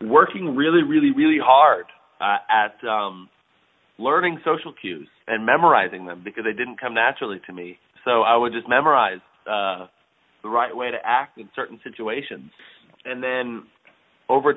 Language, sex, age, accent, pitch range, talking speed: English, male, 30-49, American, 105-125 Hz, 155 wpm